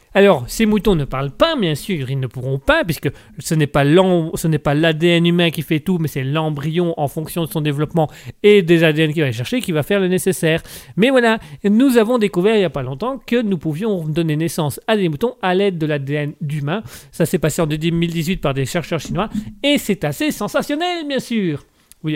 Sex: male